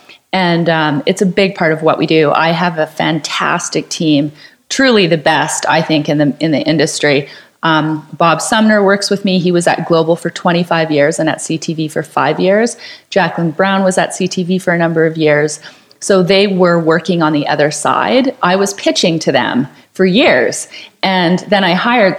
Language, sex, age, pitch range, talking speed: English, female, 30-49, 160-195 Hz, 195 wpm